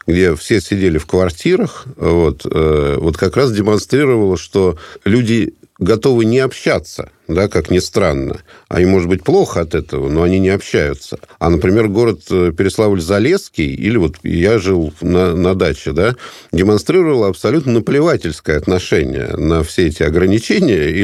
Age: 50-69